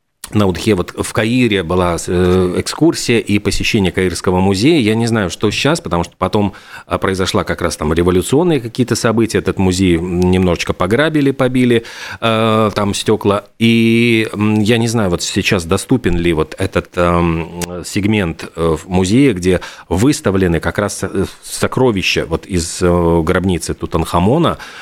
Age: 40-59